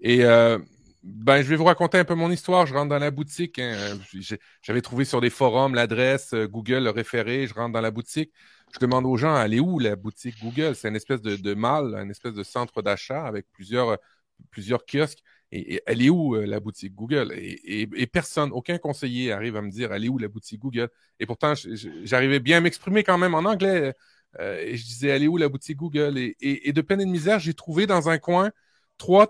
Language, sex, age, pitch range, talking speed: French, male, 30-49, 125-180 Hz, 230 wpm